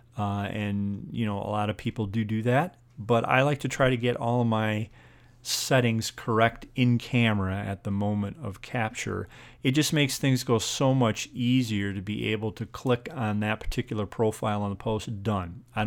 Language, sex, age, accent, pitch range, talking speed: English, male, 40-59, American, 105-125 Hz, 195 wpm